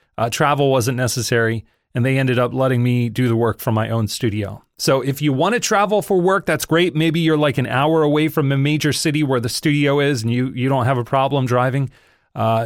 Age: 30-49